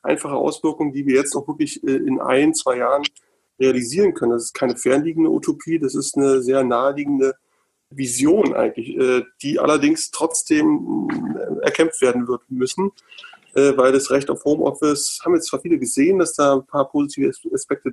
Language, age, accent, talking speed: German, 30-49, German, 160 wpm